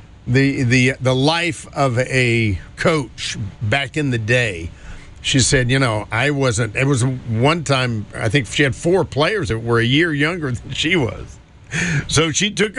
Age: 50-69